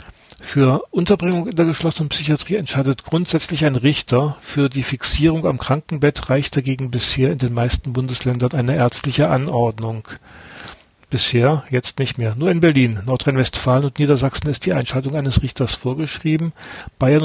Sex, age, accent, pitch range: male, 40-59, German, 120-145 Hz